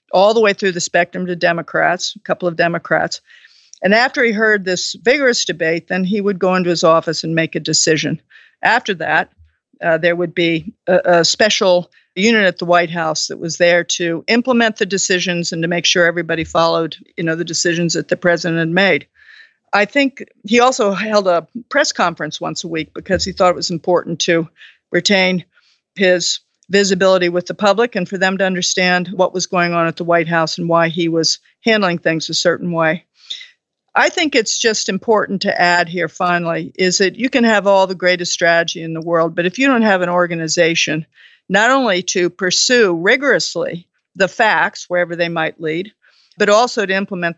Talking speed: 195 wpm